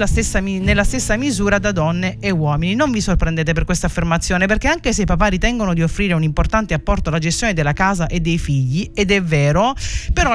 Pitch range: 165-220 Hz